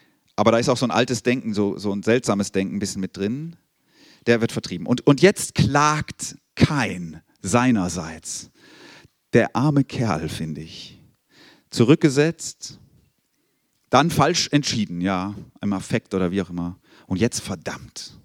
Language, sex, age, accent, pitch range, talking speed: German, male, 40-59, German, 100-145 Hz, 150 wpm